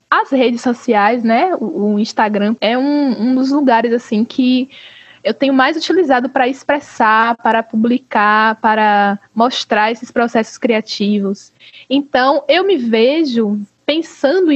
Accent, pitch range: Brazilian, 225-290 Hz